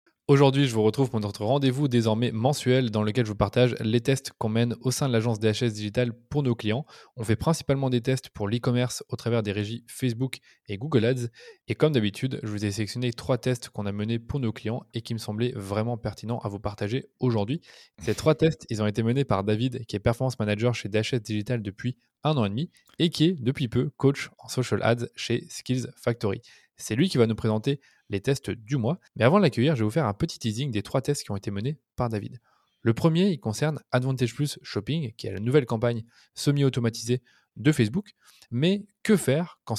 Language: French